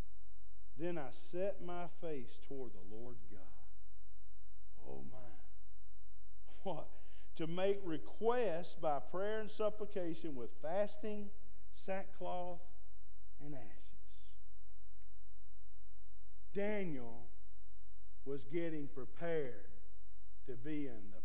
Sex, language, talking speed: male, English, 90 wpm